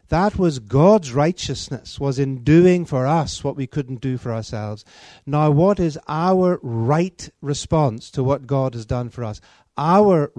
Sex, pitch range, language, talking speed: male, 125-160 Hz, Danish, 170 wpm